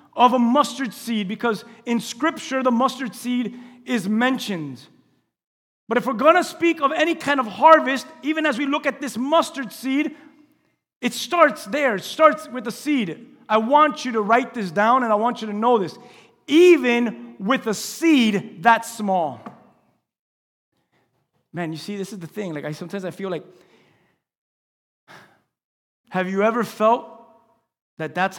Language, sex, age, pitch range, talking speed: English, male, 30-49, 175-260 Hz, 165 wpm